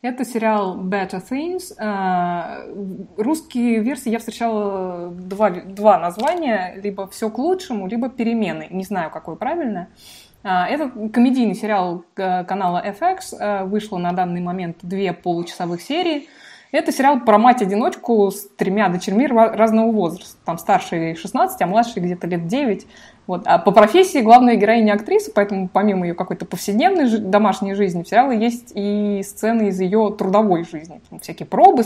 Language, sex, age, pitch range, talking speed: Russian, female, 20-39, 190-240 Hz, 145 wpm